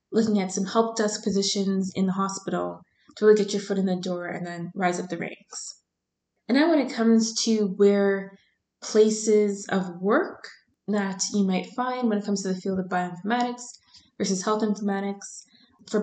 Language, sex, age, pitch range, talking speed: English, female, 20-39, 185-220 Hz, 185 wpm